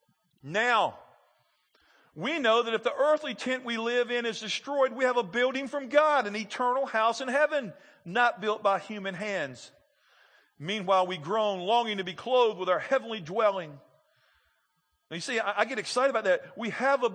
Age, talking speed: 50-69, 180 wpm